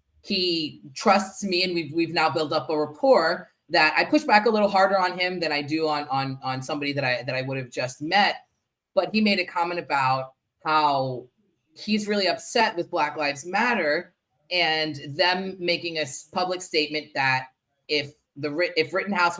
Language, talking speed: English, 185 wpm